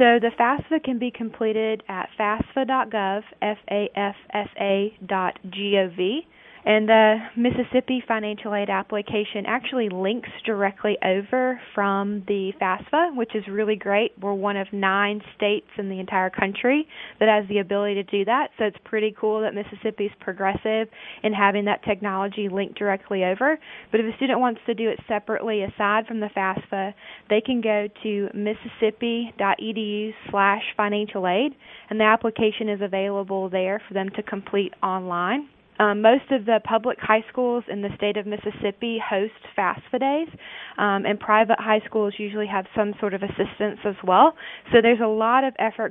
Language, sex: English, female